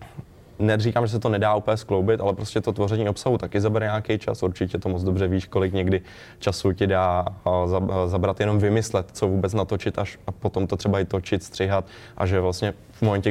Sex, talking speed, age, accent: male, 205 wpm, 20-39, native